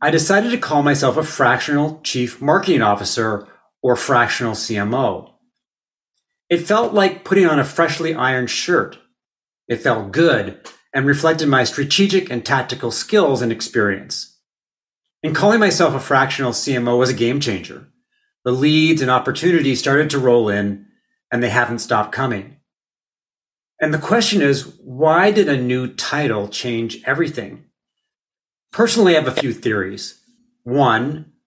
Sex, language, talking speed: male, English, 145 wpm